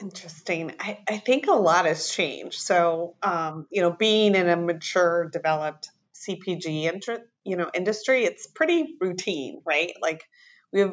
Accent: American